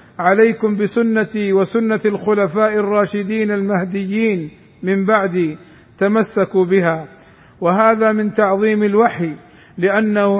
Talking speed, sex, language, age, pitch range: 85 wpm, male, Arabic, 50-69, 195-225 Hz